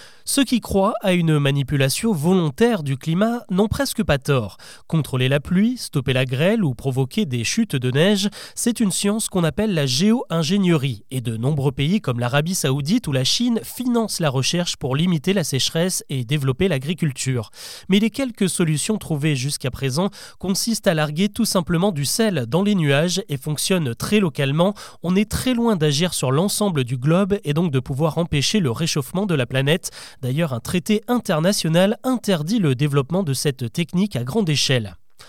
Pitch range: 140-200 Hz